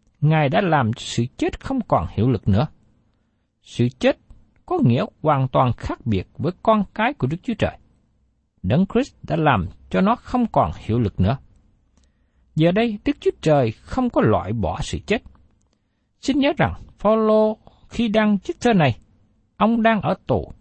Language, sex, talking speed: Vietnamese, male, 175 wpm